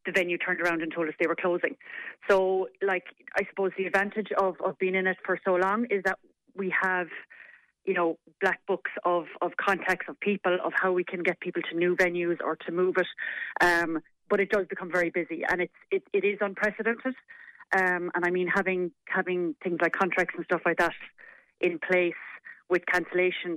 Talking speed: 205 wpm